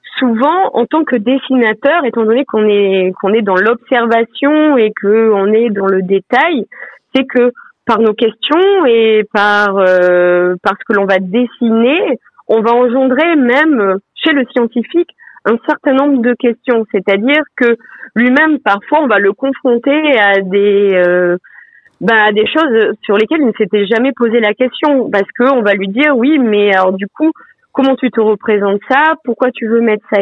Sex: female